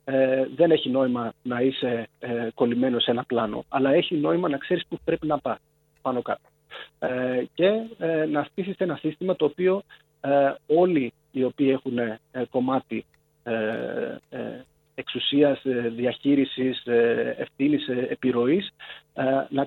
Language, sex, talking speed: Greek, male, 115 wpm